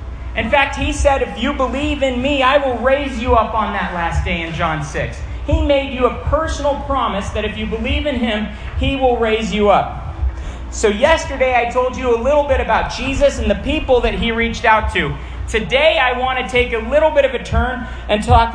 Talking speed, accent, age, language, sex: 225 wpm, American, 40-59, English, male